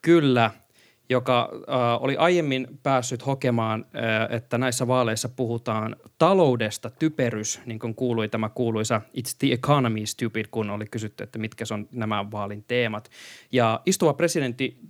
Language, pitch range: Finnish, 115-140 Hz